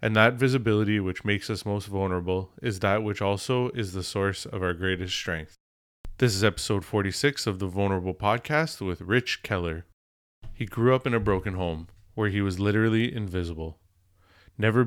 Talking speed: 175 wpm